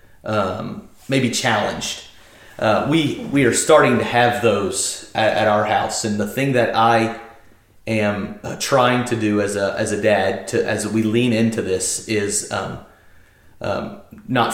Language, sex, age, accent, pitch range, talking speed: English, male, 30-49, American, 115-135 Hz, 160 wpm